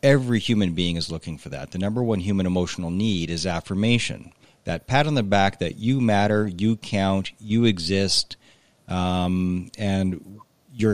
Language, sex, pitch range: English, male, 90-120 Hz